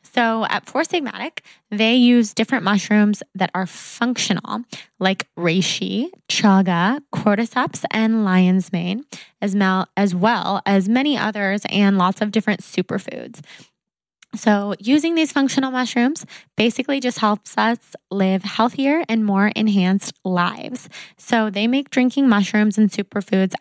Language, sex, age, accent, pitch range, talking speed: English, female, 20-39, American, 195-235 Hz, 125 wpm